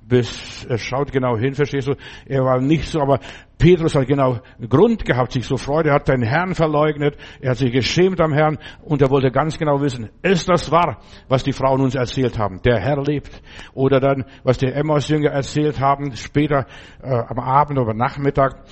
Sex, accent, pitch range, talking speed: male, German, 125-155 Hz, 200 wpm